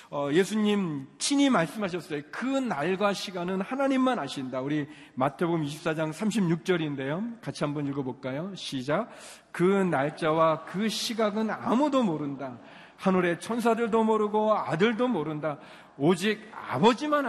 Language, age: Korean, 40-59